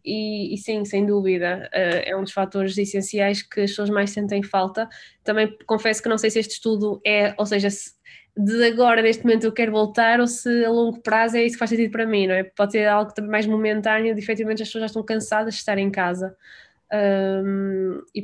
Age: 20-39